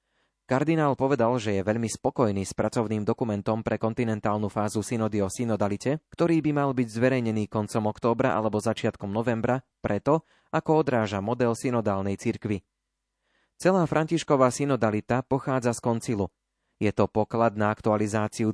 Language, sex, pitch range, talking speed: Slovak, male, 105-125 Hz, 135 wpm